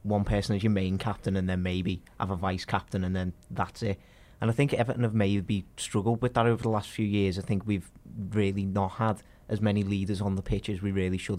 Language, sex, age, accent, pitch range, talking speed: English, male, 30-49, British, 95-110 Hz, 250 wpm